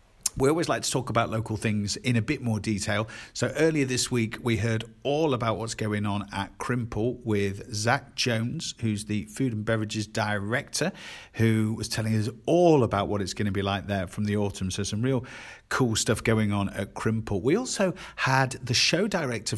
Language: English